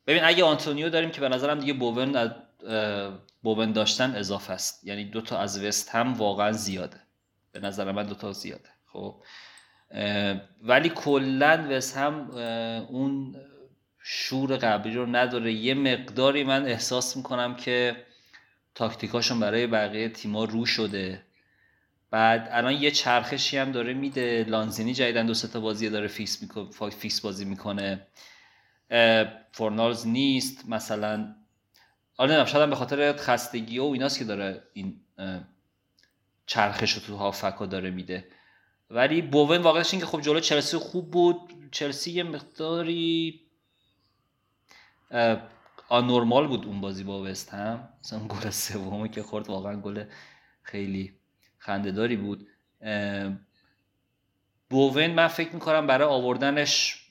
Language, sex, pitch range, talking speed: Persian, male, 105-135 Hz, 125 wpm